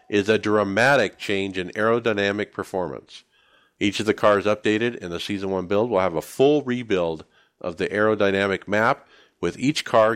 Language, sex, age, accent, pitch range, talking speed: English, male, 50-69, American, 90-110 Hz, 170 wpm